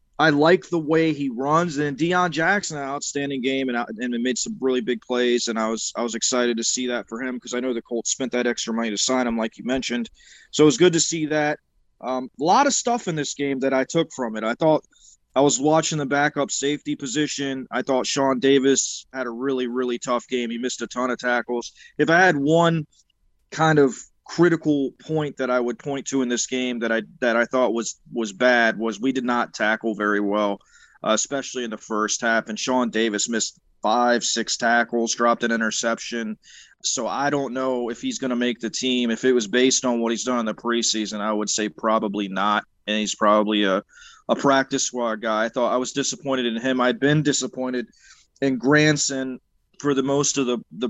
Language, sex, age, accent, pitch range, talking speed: English, male, 20-39, American, 115-135 Hz, 230 wpm